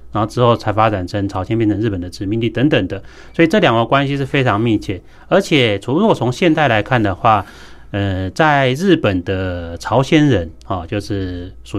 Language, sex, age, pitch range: Chinese, male, 30-49, 100-140 Hz